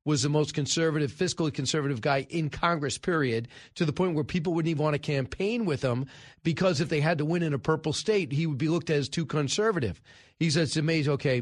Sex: male